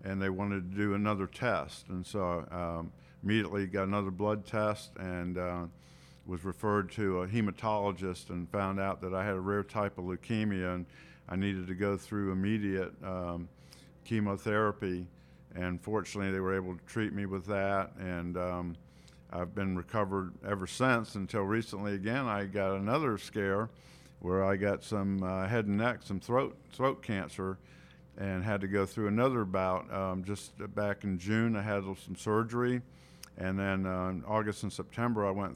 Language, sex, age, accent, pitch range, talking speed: English, male, 50-69, American, 90-105 Hz, 175 wpm